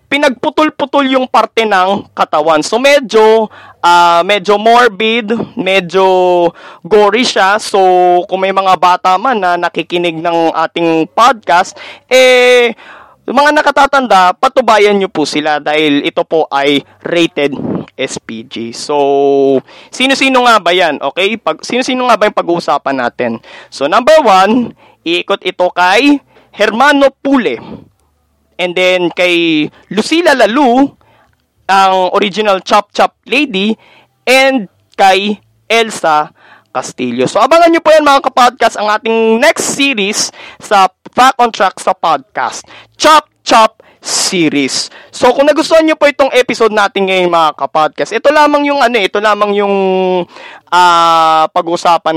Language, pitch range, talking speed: Filipino, 160-250 Hz, 125 wpm